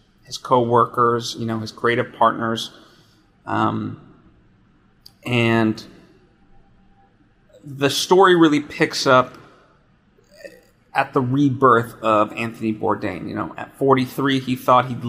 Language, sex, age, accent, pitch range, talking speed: English, male, 30-49, American, 115-135 Hz, 105 wpm